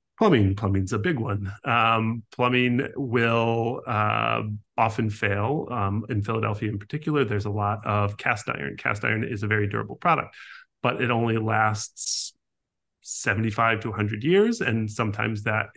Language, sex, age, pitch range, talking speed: English, male, 30-49, 105-125 Hz, 150 wpm